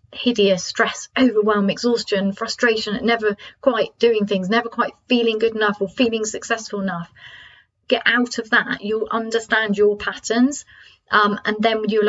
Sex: female